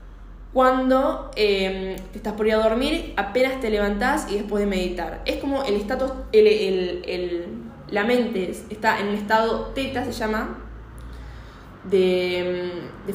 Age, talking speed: 10-29, 150 wpm